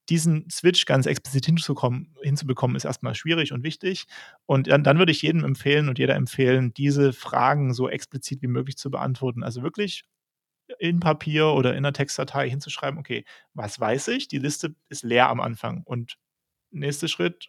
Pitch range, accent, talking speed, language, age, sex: 130-160 Hz, German, 175 wpm, German, 30-49, male